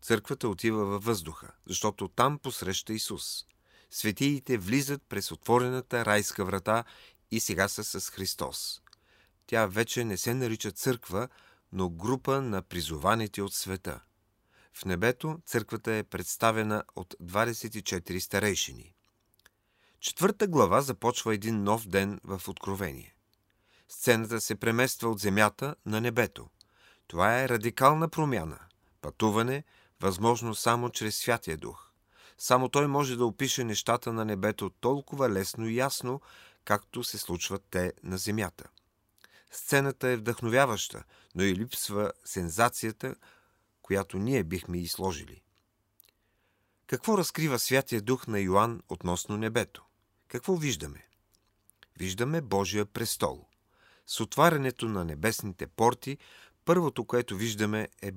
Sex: male